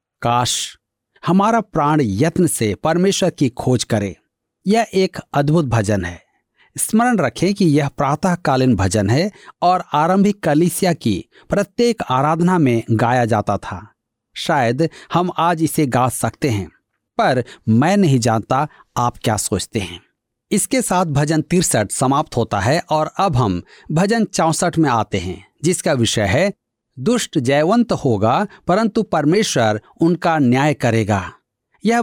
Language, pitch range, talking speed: Hindi, 120-185 Hz, 140 wpm